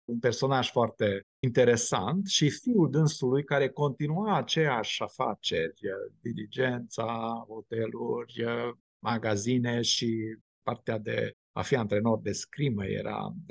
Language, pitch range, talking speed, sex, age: Romanian, 110-145 Hz, 100 wpm, male, 50-69